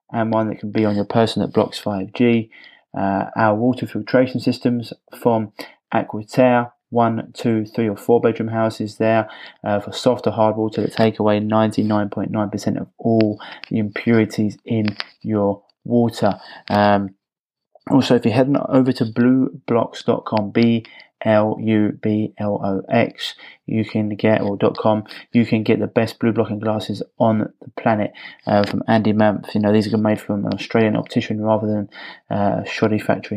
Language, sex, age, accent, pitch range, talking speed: English, male, 20-39, British, 105-115 Hz, 165 wpm